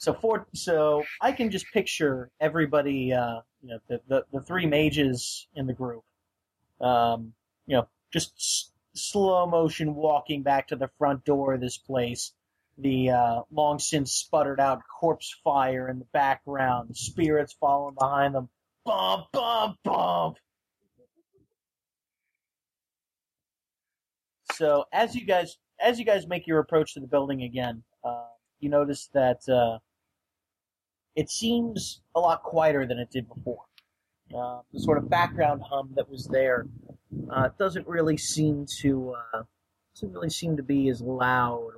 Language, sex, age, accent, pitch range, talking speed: English, male, 30-49, American, 115-150 Hz, 145 wpm